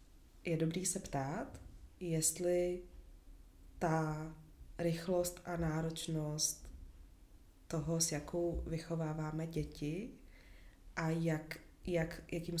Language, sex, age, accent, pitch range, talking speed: Czech, female, 20-39, native, 140-165 Hz, 75 wpm